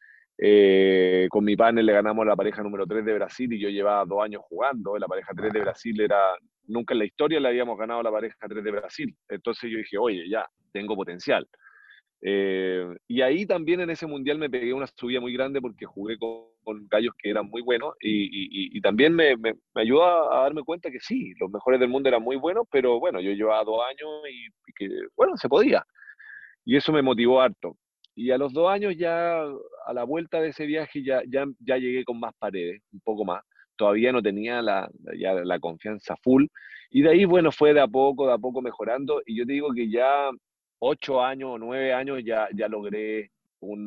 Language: Spanish